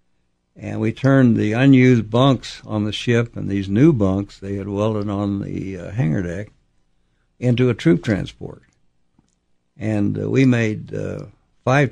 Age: 60-79